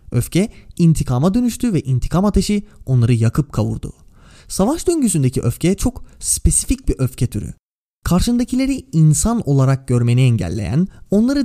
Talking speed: 120 wpm